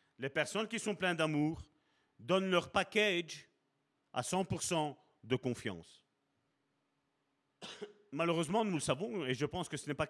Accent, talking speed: French, 145 wpm